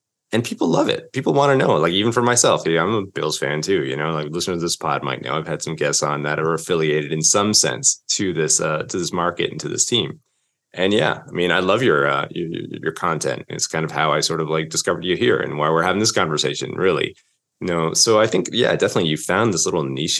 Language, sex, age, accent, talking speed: English, male, 20-39, American, 265 wpm